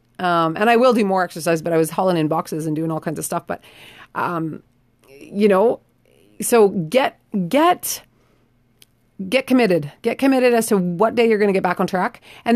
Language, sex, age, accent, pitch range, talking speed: English, female, 30-49, American, 175-230 Hz, 200 wpm